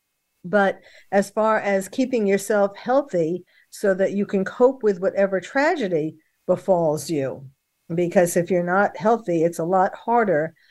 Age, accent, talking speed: 50-69, American, 145 wpm